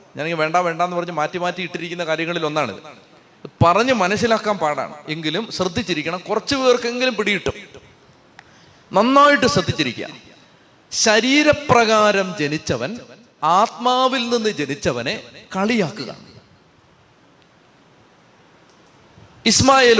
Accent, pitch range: native, 170-240 Hz